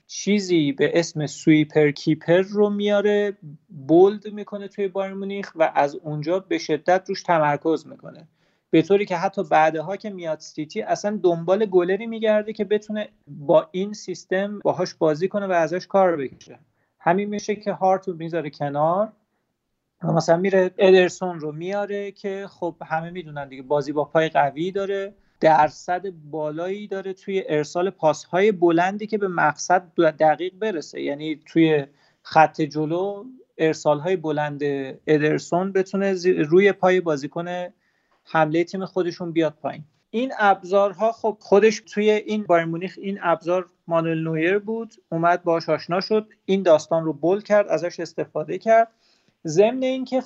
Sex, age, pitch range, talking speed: male, 30-49, 160-200 Hz, 140 wpm